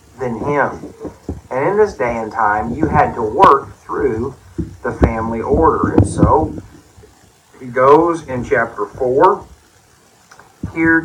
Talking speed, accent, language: 125 wpm, American, English